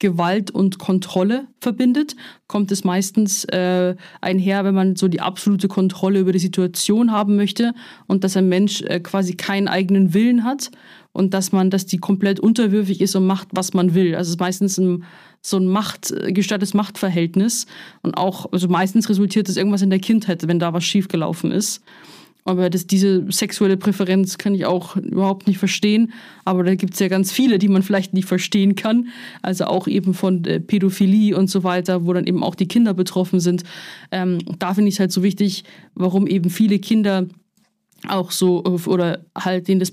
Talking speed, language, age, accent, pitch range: 190 wpm, German, 20-39, German, 185-200 Hz